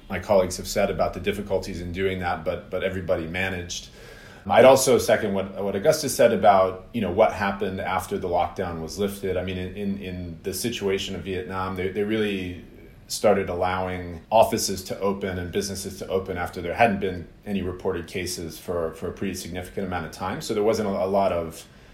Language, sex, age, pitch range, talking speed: English, male, 30-49, 90-105 Hz, 200 wpm